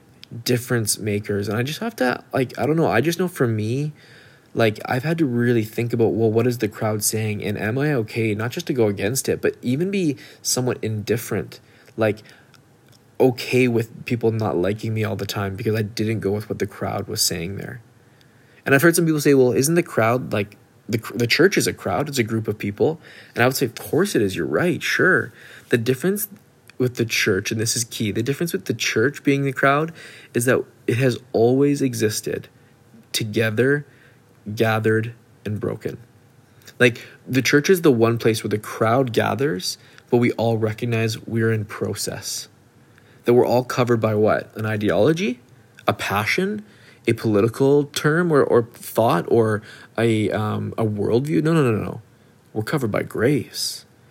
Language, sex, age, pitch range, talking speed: English, male, 20-39, 110-130 Hz, 190 wpm